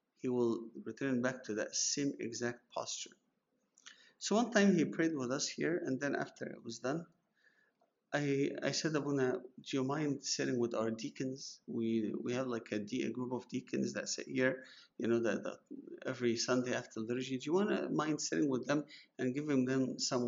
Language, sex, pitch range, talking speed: English, male, 120-155 Hz, 195 wpm